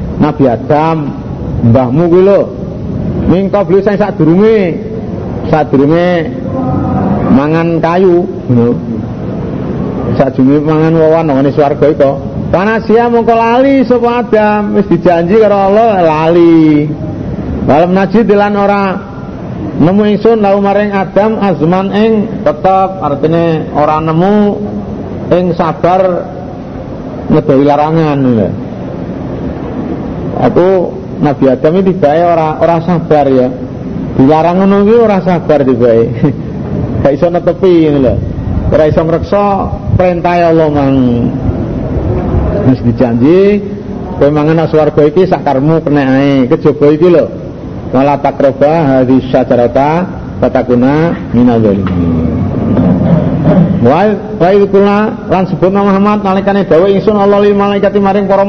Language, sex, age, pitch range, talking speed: Indonesian, male, 50-69, 140-200 Hz, 115 wpm